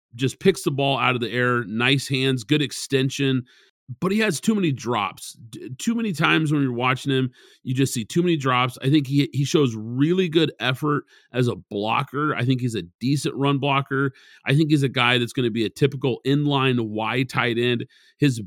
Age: 40-59